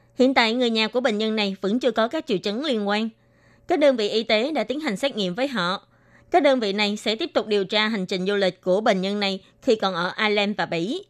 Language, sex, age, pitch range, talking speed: Vietnamese, female, 20-39, 195-255 Hz, 275 wpm